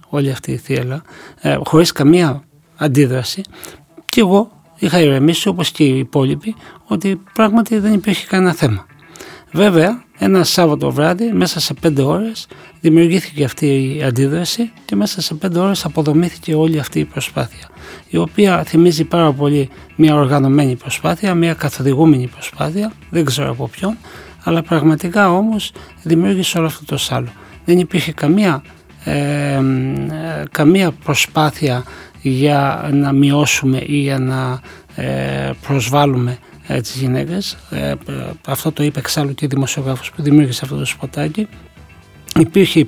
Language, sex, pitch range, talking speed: Greek, male, 135-175 Hz, 130 wpm